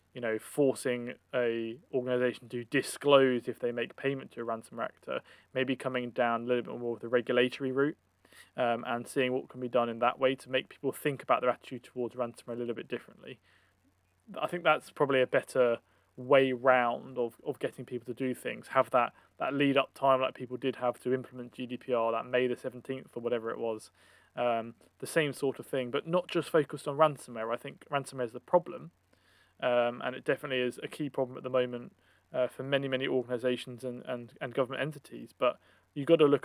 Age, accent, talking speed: 20-39, British, 210 wpm